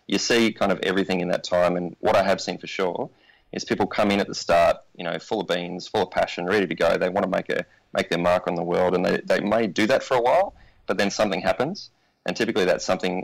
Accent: Australian